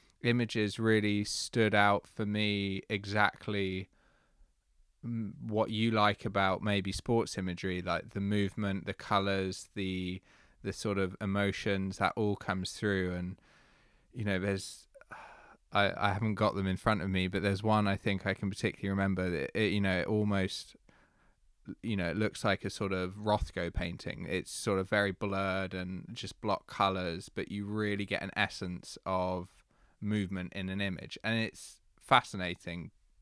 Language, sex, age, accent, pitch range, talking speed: English, male, 20-39, British, 95-110 Hz, 165 wpm